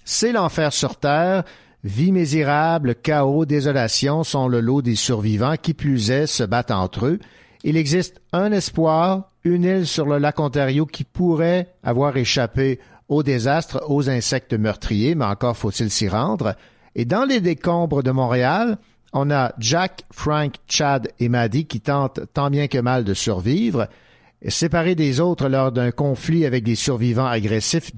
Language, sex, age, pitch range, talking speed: French, male, 50-69, 120-160 Hz, 165 wpm